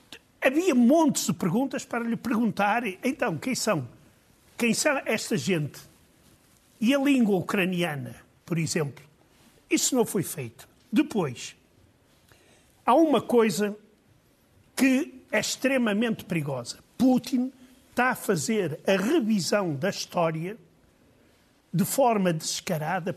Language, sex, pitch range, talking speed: Portuguese, male, 180-265 Hz, 110 wpm